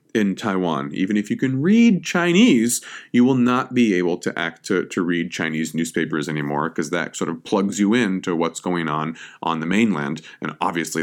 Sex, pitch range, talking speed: male, 85-120 Hz, 200 wpm